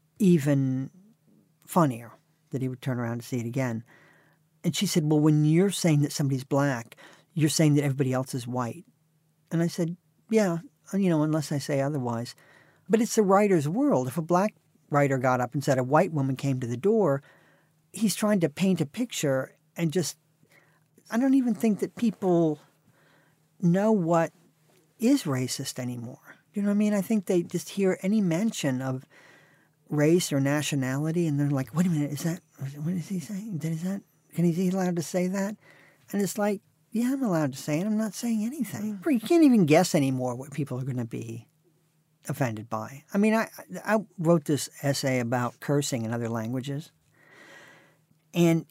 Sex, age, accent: male, 50-69, American